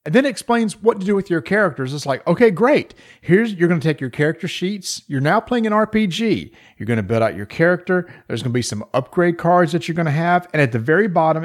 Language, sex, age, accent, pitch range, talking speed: English, male, 40-59, American, 135-185 Hz, 265 wpm